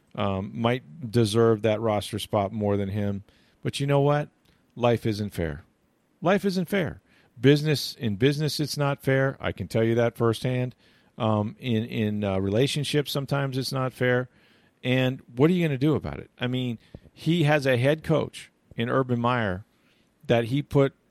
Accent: American